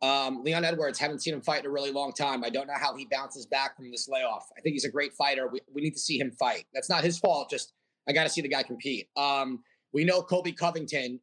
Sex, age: male, 30-49